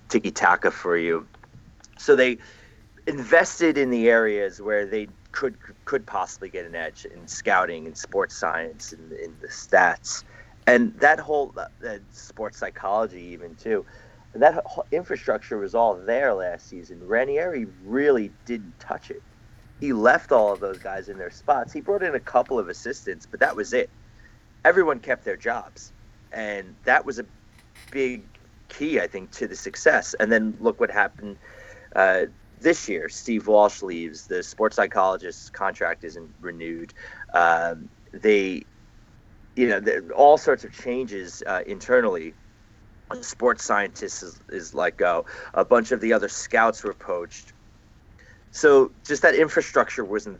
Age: 30-49